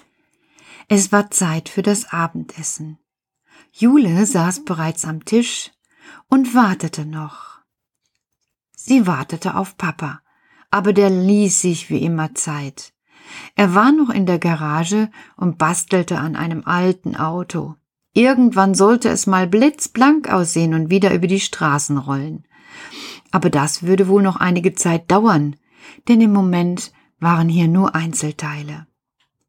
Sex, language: female, German